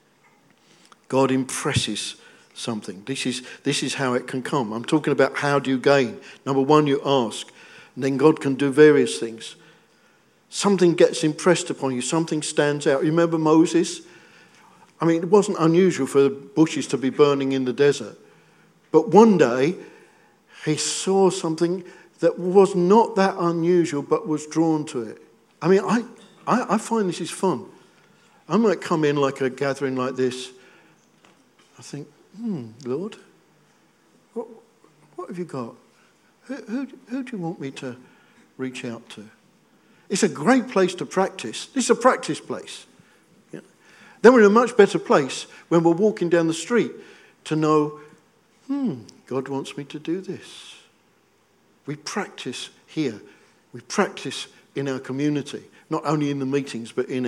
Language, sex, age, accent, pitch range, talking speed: English, male, 50-69, British, 135-185 Hz, 160 wpm